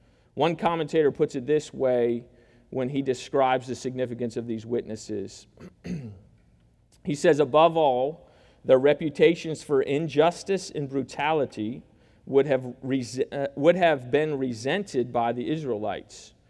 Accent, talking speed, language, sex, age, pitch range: American, 115 wpm, English, male, 40-59, 125-160 Hz